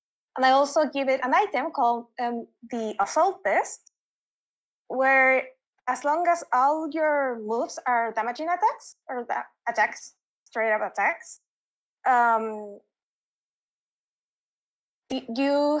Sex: female